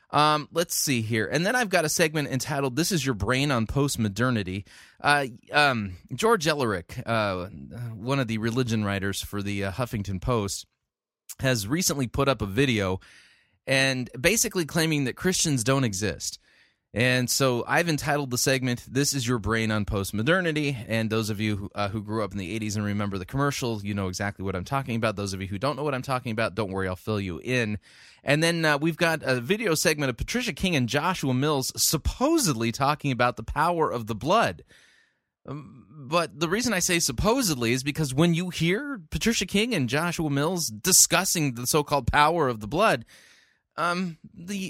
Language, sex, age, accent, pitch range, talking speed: English, male, 20-39, American, 110-160 Hz, 195 wpm